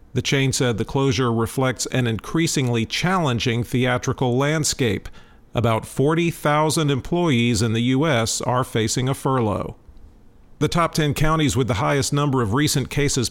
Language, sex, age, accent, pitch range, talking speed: English, male, 50-69, American, 110-140 Hz, 145 wpm